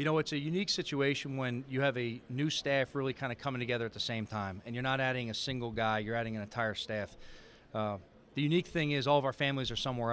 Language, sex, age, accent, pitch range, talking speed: English, male, 40-59, American, 125-160 Hz, 260 wpm